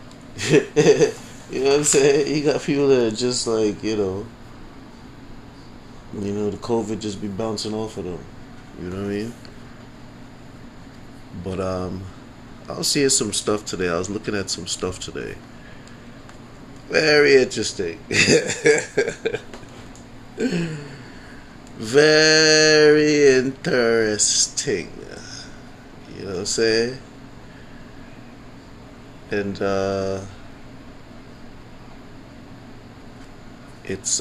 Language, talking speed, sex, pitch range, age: English, 100 wpm, male, 100-130 Hz, 20-39